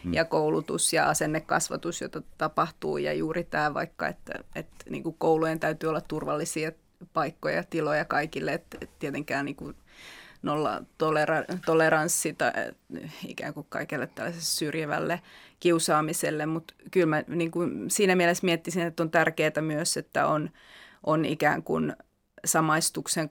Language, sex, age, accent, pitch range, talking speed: Finnish, female, 30-49, native, 155-170 Hz, 135 wpm